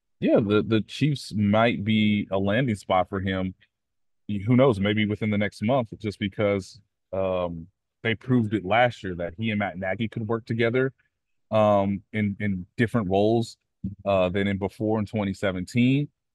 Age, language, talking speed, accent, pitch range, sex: 30-49, English, 165 wpm, American, 95-115 Hz, male